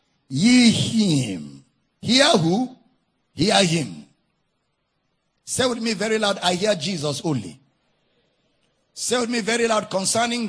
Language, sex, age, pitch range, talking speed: English, male, 50-69, 140-205 Hz, 120 wpm